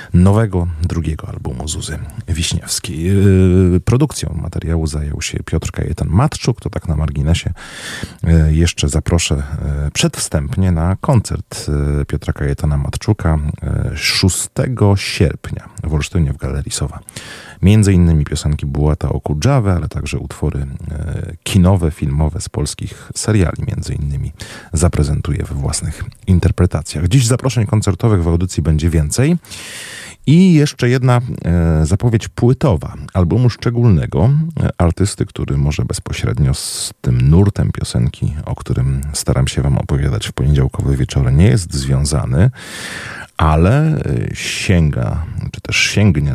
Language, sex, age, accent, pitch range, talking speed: Polish, male, 30-49, native, 75-105 Hz, 115 wpm